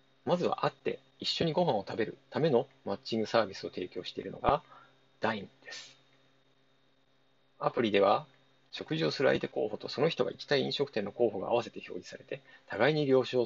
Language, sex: Japanese, male